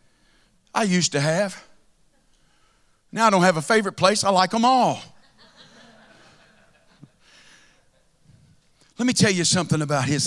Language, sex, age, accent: English, male, 50-69, American